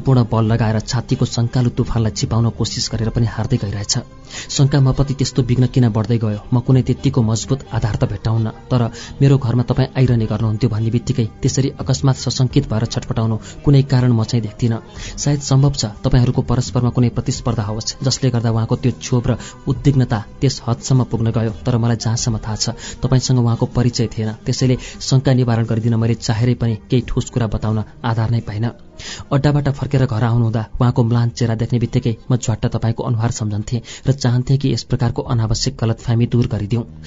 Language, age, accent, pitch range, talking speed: Hindi, 30-49, native, 115-130 Hz, 155 wpm